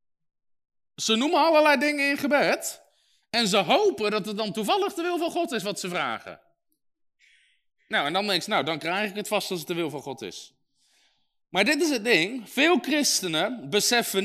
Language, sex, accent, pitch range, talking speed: Dutch, male, Dutch, 205-330 Hz, 200 wpm